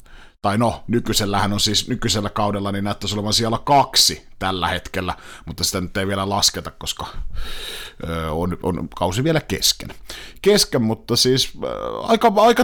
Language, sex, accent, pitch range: Finnish, male, native, 95-135 Hz